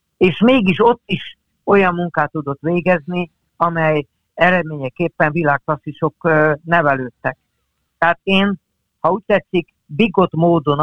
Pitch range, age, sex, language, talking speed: 145-180 Hz, 60-79, male, Hungarian, 105 wpm